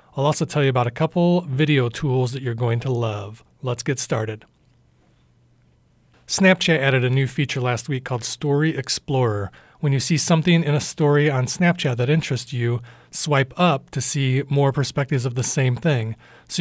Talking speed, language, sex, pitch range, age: 180 wpm, English, male, 125-150 Hz, 40-59